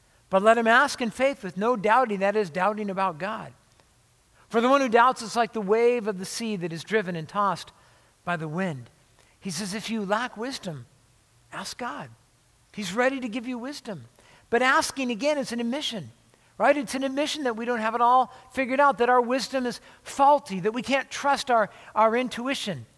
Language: English